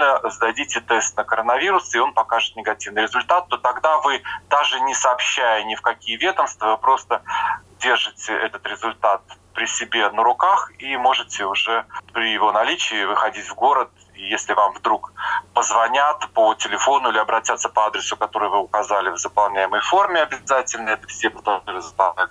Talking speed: 155 wpm